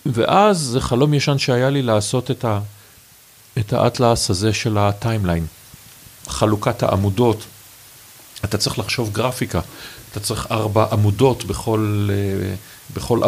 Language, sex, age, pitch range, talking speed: Hebrew, male, 50-69, 100-130 Hz, 120 wpm